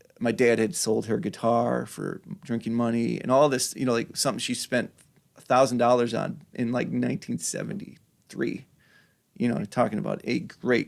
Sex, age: male, 30-49